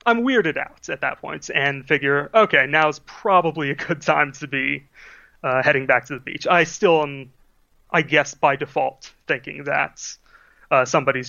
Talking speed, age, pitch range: 175 wpm, 30-49, 140-170 Hz